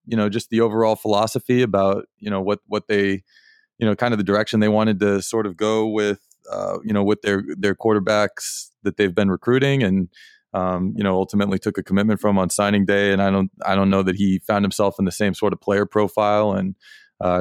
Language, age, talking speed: English, 20-39, 230 wpm